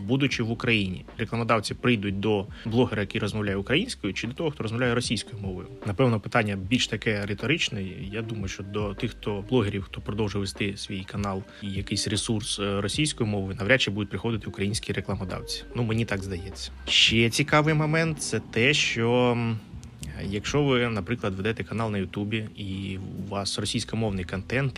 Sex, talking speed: male, 160 wpm